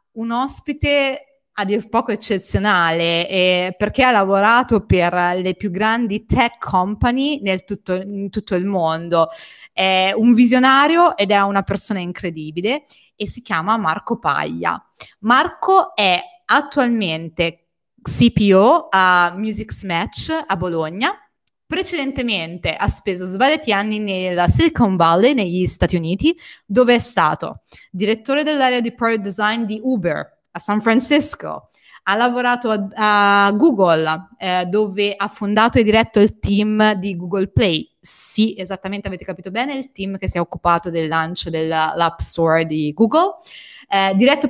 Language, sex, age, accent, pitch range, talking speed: Italian, female, 30-49, native, 185-240 Hz, 140 wpm